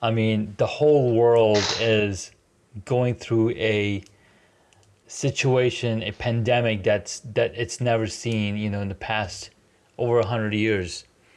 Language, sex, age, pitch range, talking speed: English, male, 30-49, 105-120 Hz, 135 wpm